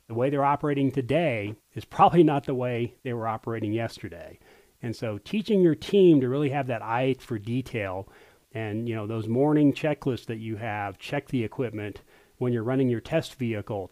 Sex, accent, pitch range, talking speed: male, American, 110-135 Hz, 190 wpm